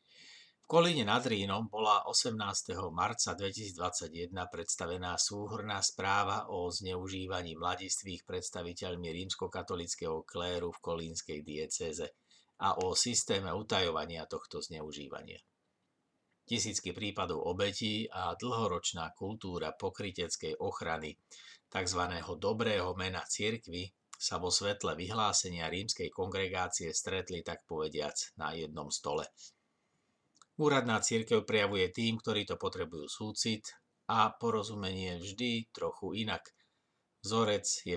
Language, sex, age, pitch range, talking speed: Slovak, male, 50-69, 90-110 Hz, 105 wpm